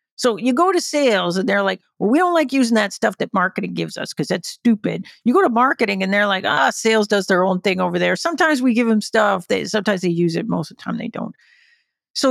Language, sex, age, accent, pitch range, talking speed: English, female, 50-69, American, 185-245 Hz, 260 wpm